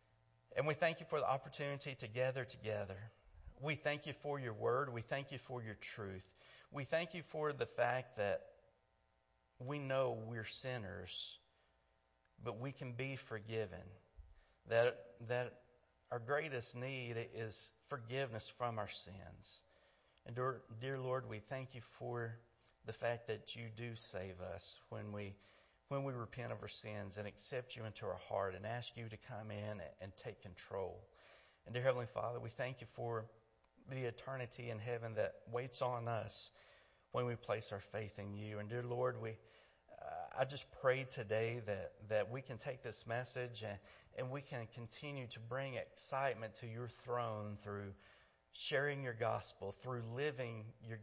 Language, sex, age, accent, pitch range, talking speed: English, male, 50-69, American, 105-130 Hz, 165 wpm